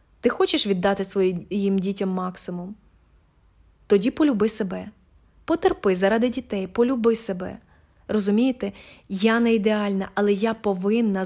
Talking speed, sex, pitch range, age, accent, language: 110 wpm, female, 190-225 Hz, 20-39, native, Ukrainian